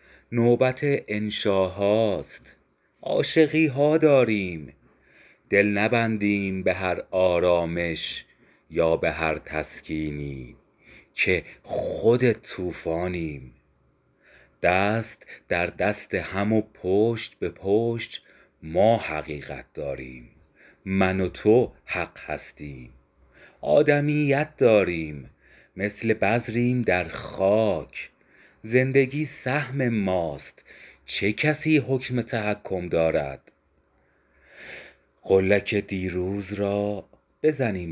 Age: 30-49